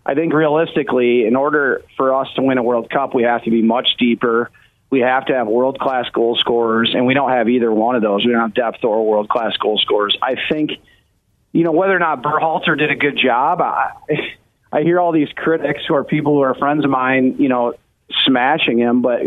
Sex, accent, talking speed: male, American, 225 wpm